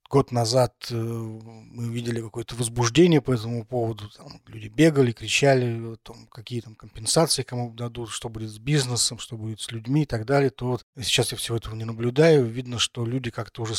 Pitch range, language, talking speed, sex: 115-130 Hz, Russian, 185 wpm, male